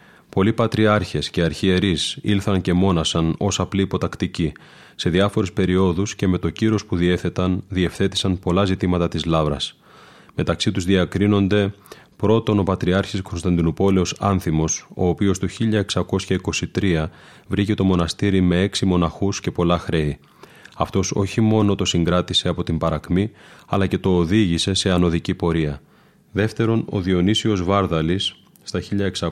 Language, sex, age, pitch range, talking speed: Greek, male, 30-49, 85-100 Hz, 130 wpm